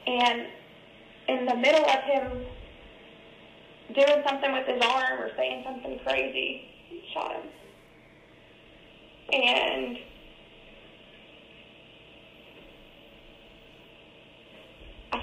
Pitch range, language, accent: 215-275 Hz, English, American